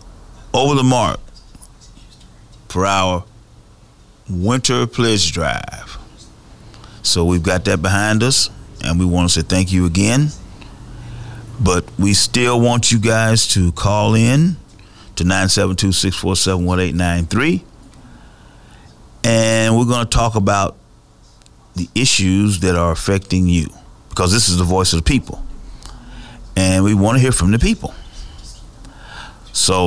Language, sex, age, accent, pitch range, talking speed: English, male, 40-59, American, 90-110 Hz, 125 wpm